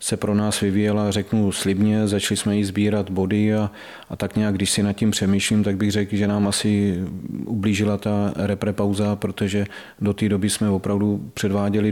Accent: native